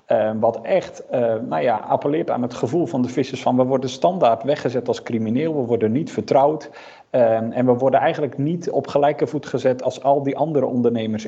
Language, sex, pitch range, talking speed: Dutch, male, 115-150 Hz, 210 wpm